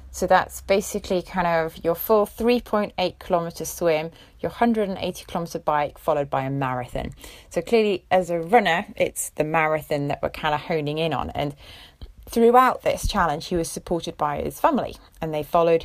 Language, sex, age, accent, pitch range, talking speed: English, female, 30-49, British, 155-205 Hz, 175 wpm